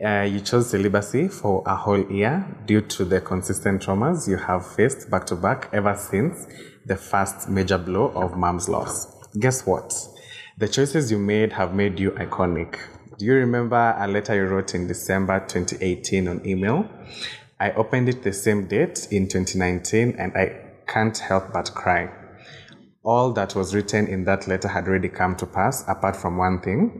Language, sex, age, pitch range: English, male, 20-39, 95-105 Hz